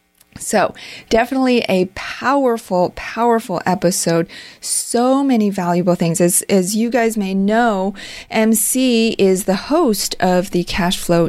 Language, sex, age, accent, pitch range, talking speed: English, female, 30-49, American, 175-220 Hz, 120 wpm